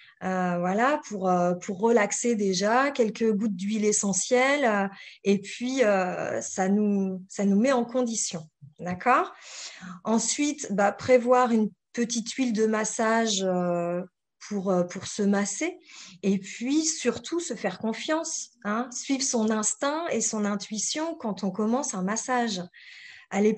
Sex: female